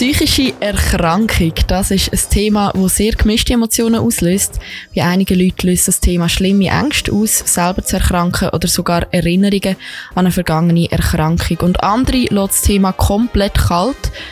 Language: German